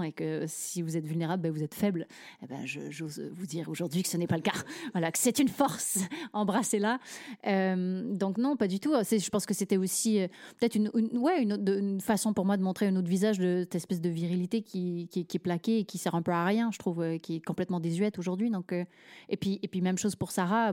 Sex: female